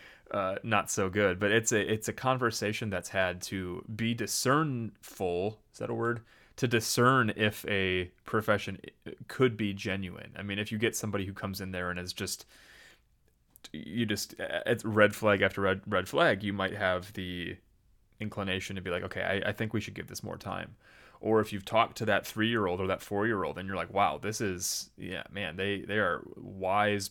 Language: English